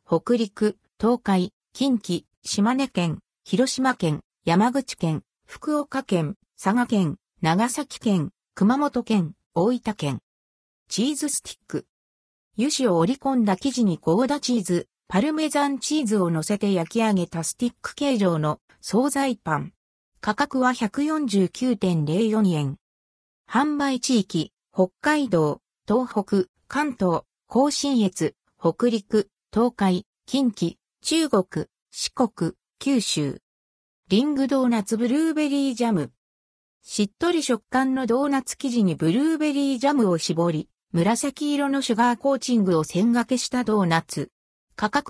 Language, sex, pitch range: Japanese, female, 175-265 Hz